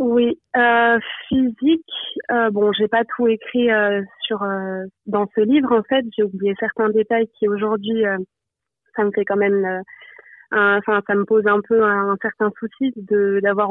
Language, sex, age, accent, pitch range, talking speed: French, female, 20-39, French, 210-235 Hz, 185 wpm